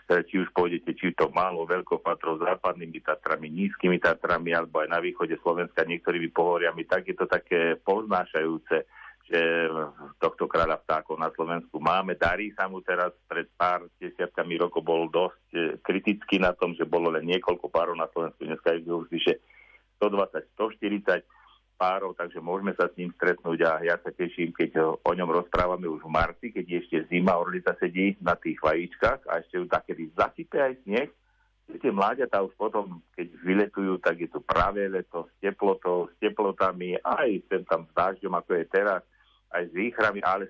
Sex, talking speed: male, 170 wpm